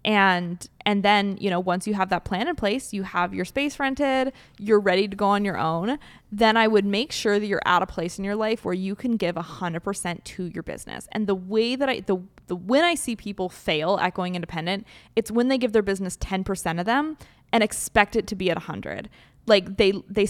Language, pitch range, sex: English, 185-220 Hz, female